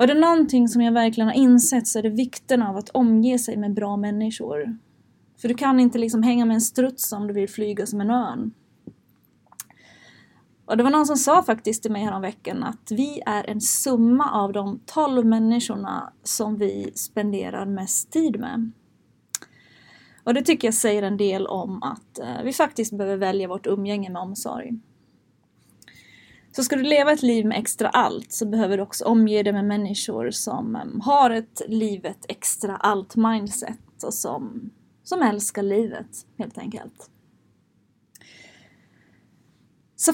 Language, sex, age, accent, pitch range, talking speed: Swedish, female, 20-39, native, 210-245 Hz, 165 wpm